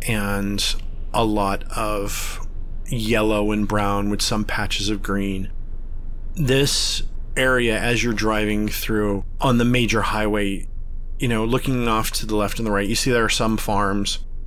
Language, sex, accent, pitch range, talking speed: English, male, American, 100-120 Hz, 160 wpm